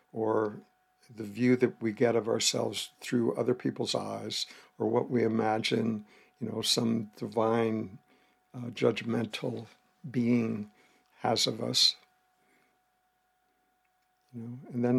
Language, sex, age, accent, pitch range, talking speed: English, male, 60-79, American, 115-130 Hz, 120 wpm